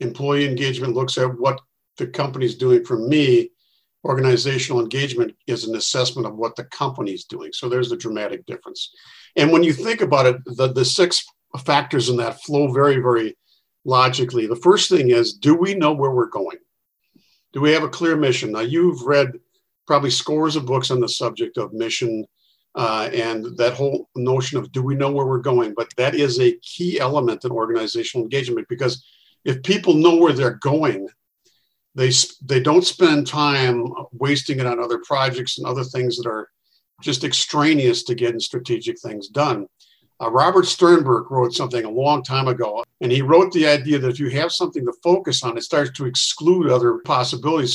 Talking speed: 185 wpm